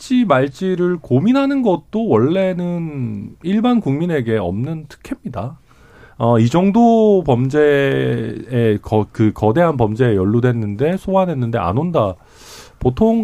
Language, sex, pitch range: Korean, male, 115-190 Hz